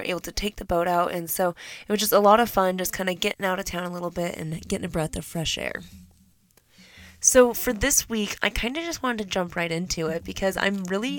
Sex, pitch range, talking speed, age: female, 170-210 Hz, 265 wpm, 20-39